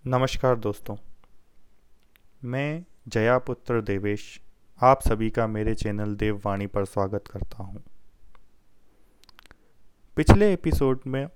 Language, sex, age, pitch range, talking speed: Hindi, male, 20-39, 105-135 Hz, 100 wpm